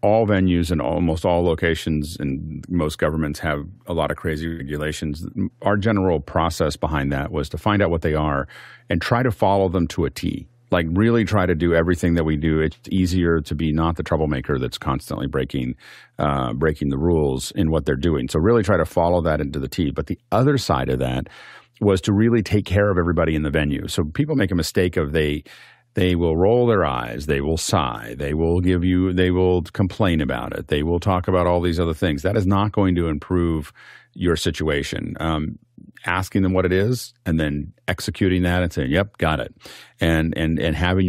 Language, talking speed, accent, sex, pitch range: English, 215 wpm, American, male, 75-95 Hz